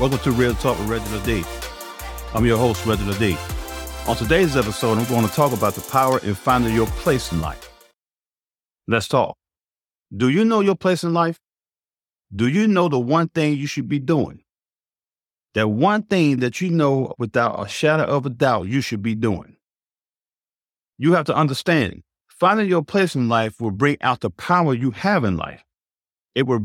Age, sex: 50-69, male